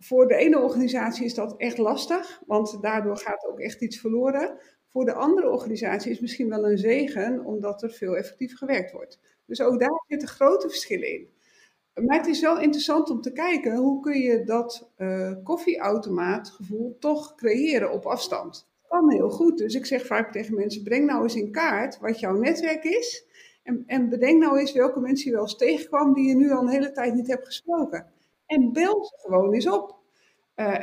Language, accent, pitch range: Dutch, Dutch, 230-305 Hz